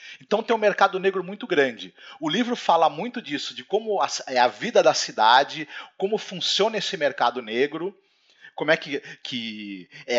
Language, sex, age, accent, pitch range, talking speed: Portuguese, male, 40-59, Brazilian, 145-215 Hz, 170 wpm